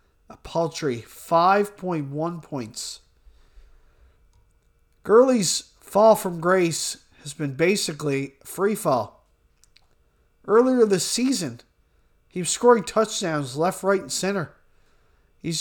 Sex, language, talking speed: male, English, 100 wpm